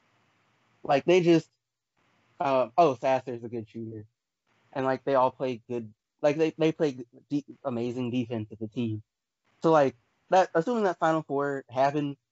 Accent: American